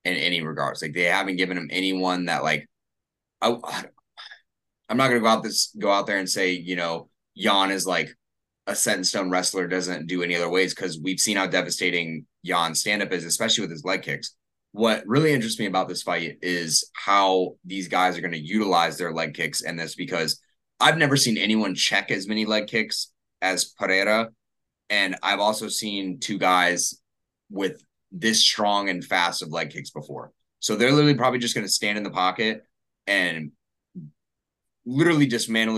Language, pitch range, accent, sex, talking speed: English, 90-115 Hz, American, male, 190 wpm